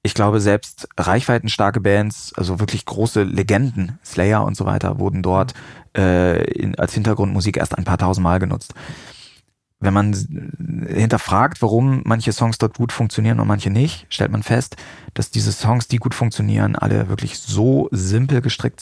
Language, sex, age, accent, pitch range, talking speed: German, male, 30-49, German, 100-120 Hz, 160 wpm